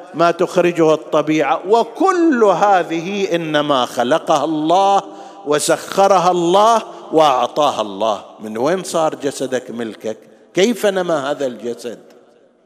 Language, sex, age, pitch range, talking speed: Arabic, male, 50-69, 135-175 Hz, 100 wpm